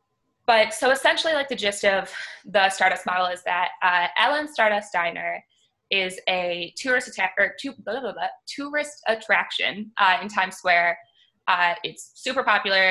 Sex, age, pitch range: female, 20-39, 180-210 Hz